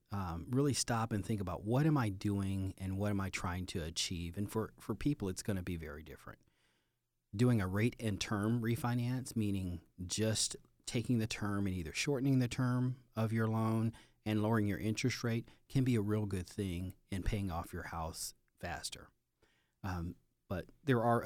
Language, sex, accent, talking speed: English, male, American, 190 wpm